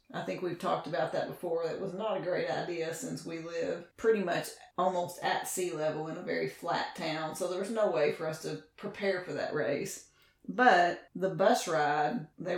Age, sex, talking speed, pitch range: 40-59, female, 210 wpm, 155-190 Hz